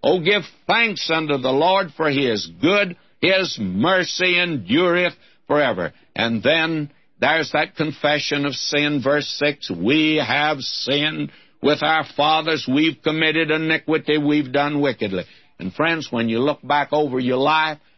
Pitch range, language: 135-160 Hz, English